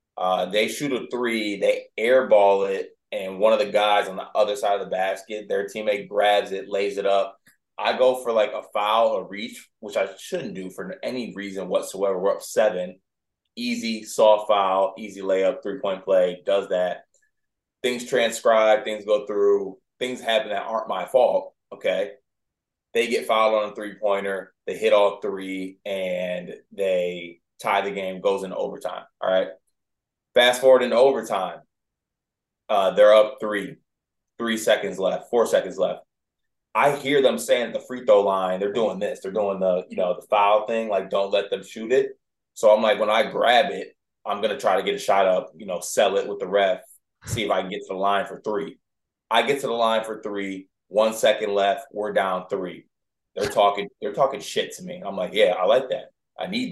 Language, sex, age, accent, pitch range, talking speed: English, male, 20-39, American, 95-125 Hz, 200 wpm